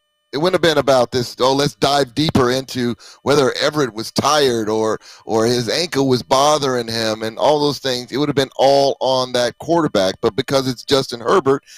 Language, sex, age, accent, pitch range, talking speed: English, male, 30-49, American, 135-225 Hz, 200 wpm